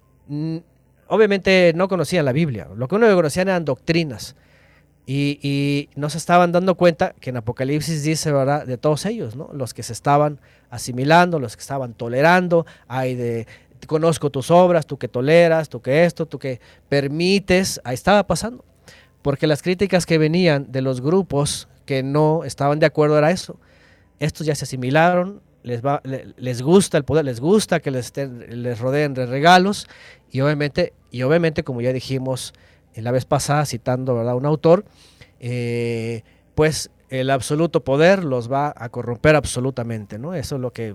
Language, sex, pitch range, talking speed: Spanish, male, 125-170 Hz, 175 wpm